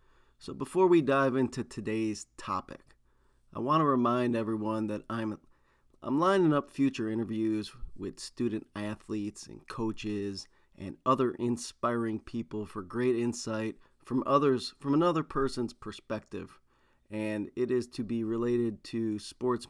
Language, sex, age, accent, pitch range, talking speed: English, male, 30-49, American, 105-130 Hz, 135 wpm